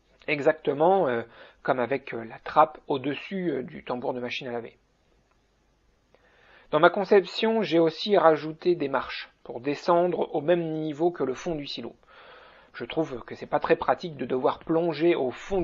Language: French